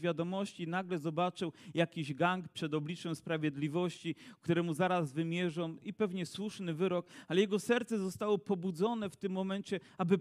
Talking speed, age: 140 wpm, 40-59